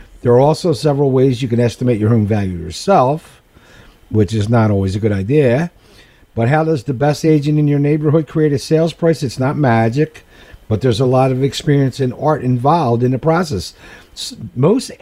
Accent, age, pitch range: American, 60-79, 105-155 Hz